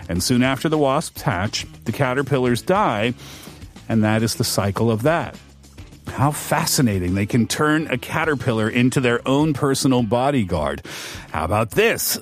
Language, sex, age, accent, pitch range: Korean, male, 40-59, American, 115-165 Hz